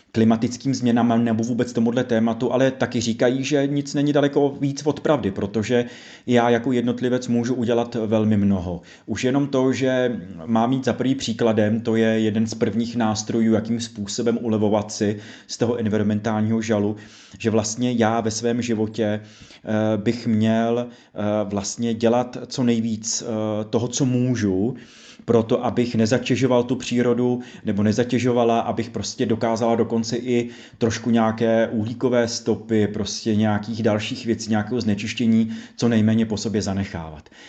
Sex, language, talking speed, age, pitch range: male, Czech, 140 wpm, 30-49, 110-120 Hz